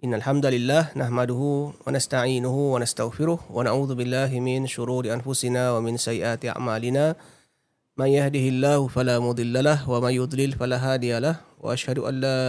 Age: 30-49